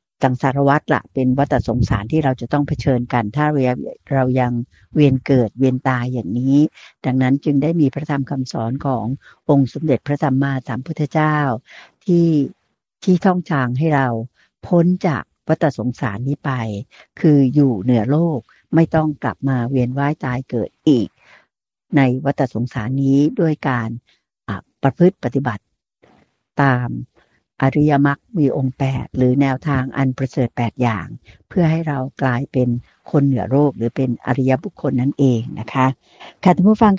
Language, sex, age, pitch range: Thai, female, 60-79, 125-150 Hz